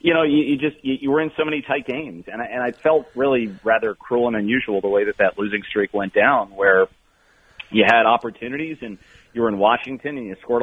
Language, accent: English, American